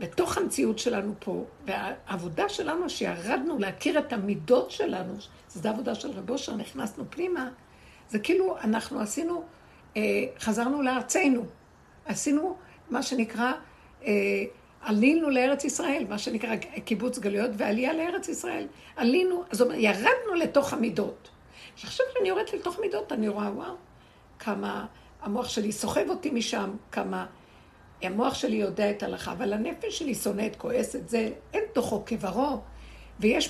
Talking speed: 130 wpm